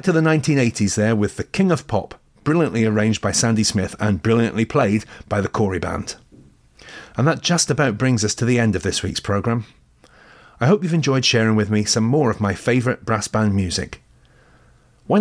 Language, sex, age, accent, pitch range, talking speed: English, male, 40-59, British, 100-135 Hz, 195 wpm